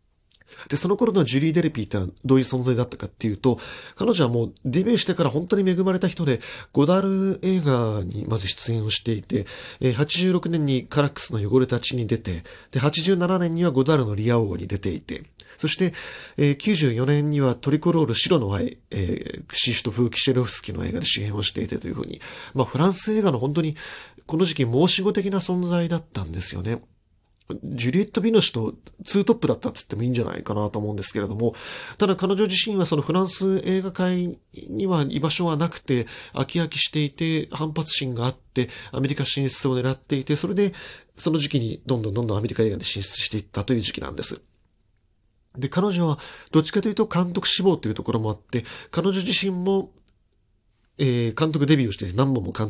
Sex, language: male, Japanese